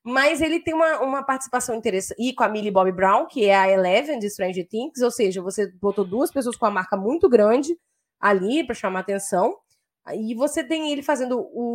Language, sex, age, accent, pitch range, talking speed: Portuguese, female, 20-39, Brazilian, 200-265 Hz, 210 wpm